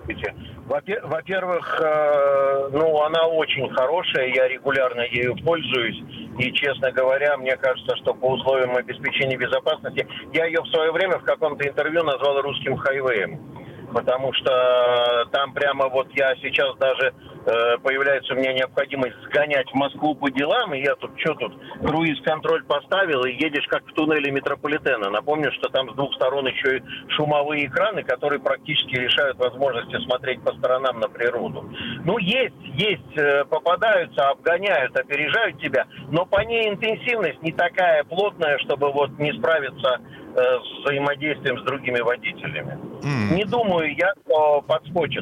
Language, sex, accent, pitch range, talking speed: Russian, male, native, 135-170 Hz, 145 wpm